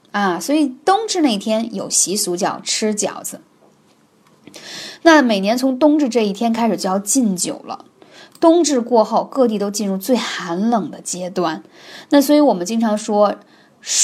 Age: 20-39